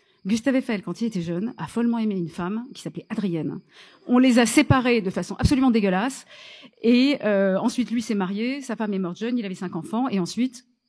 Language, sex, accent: French, female, French